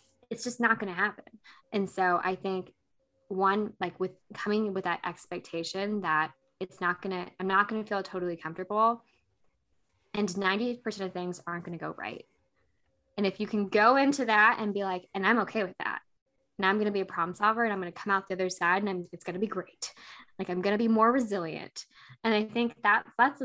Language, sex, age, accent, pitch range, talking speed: English, female, 10-29, American, 180-235 Hz, 225 wpm